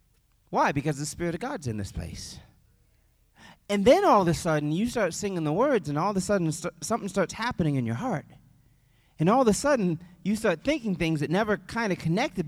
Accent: American